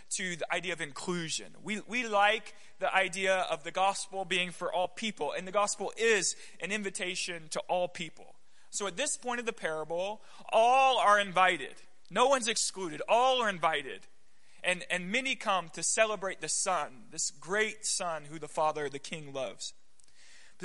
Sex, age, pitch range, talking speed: male, 30-49, 160-205 Hz, 175 wpm